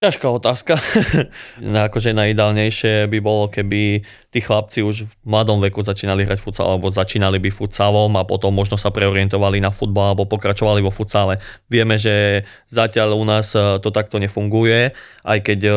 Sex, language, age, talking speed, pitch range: male, Slovak, 20-39, 160 wpm, 105-115 Hz